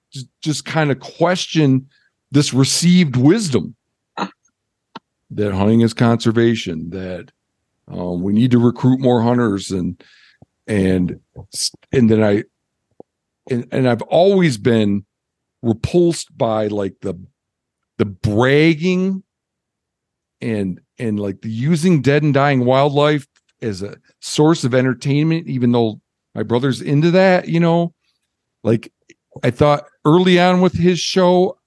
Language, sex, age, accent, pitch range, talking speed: English, male, 50-69, American, 115-150 Hz, 125 wpm